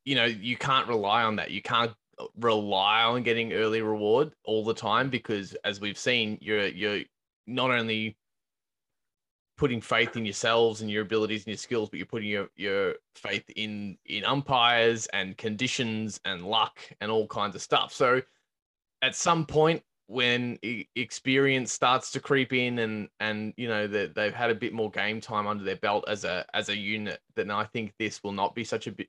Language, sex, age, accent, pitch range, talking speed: English, male, 20-39, Australian, 105-125 Hz, 190 wpm